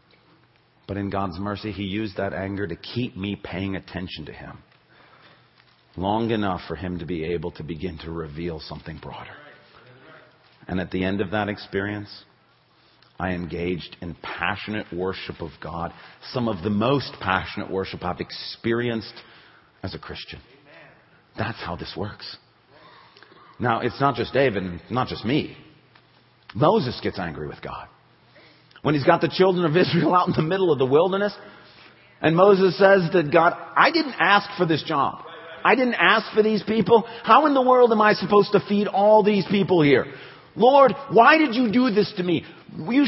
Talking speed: 170 wpm